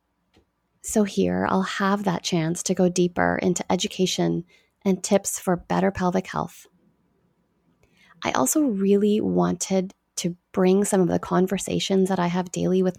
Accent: American